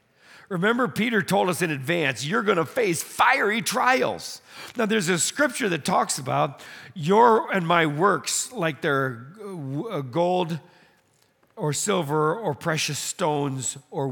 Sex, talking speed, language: male, 135 wpm, English